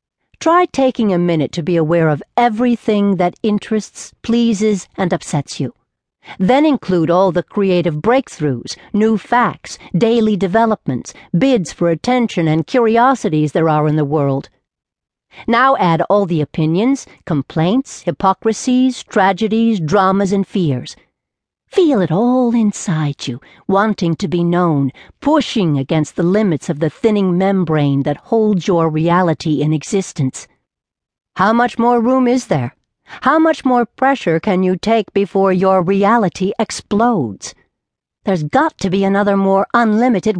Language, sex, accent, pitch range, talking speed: English, female, American, 165-225 Hz, 140 wpm